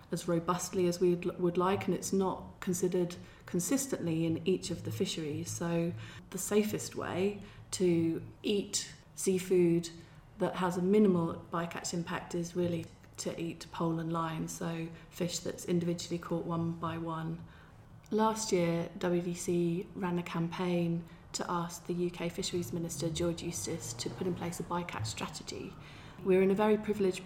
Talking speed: 155 wpm